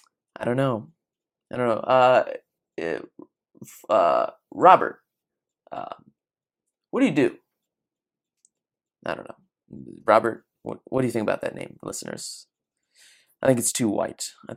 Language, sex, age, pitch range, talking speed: English, male, 20-39, 115-160 Hz, 135 wpm